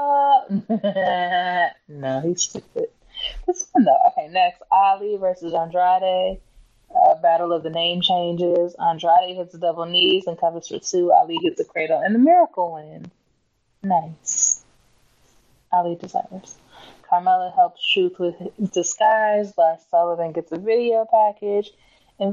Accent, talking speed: American, 135 wpm